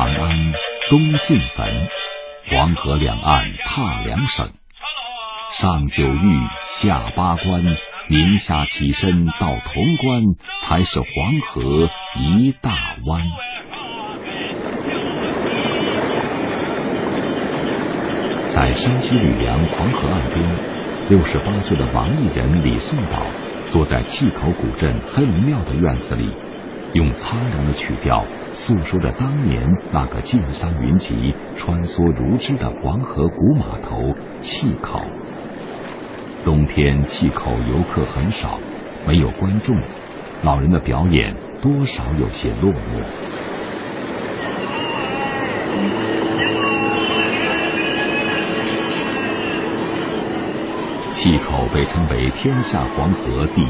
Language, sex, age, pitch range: Chinese, male, 50-69, 75-115 Hz